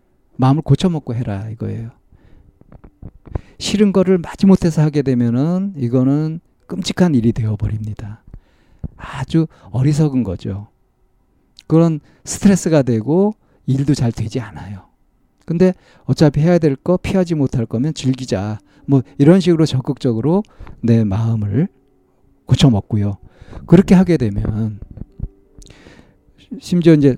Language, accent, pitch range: Korean, native, 110-160 Hz